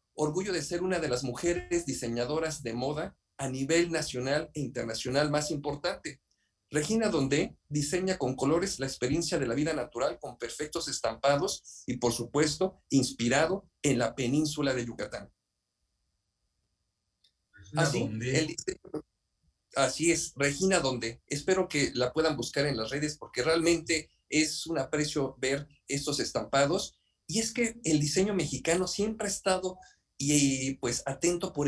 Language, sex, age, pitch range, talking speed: Spanish, male, 50-69, 125-165 Hz, 140 wpm